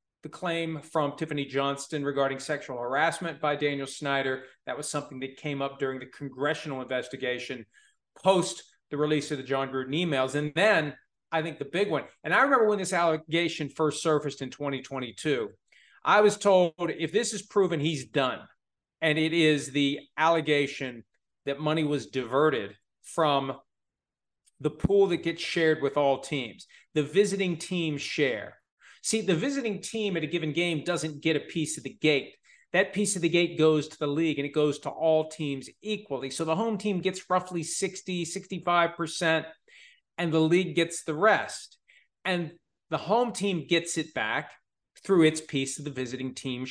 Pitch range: 145-175 Hz